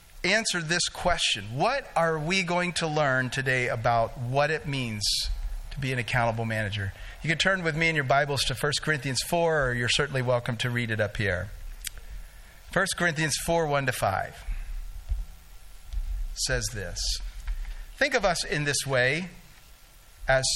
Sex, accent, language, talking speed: male, American, English, 155 wpm